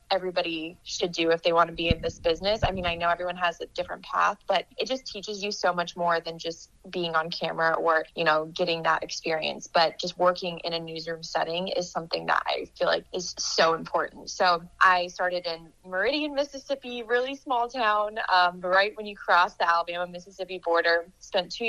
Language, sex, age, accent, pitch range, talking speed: English, female, 20-39, American, 170-195 Hz, 210 wpm